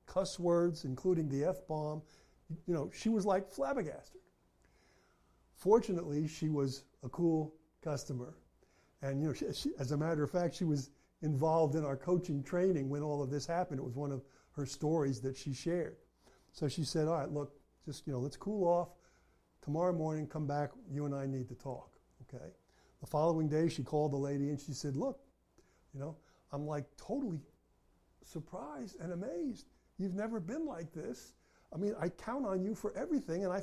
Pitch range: 135-170 Hz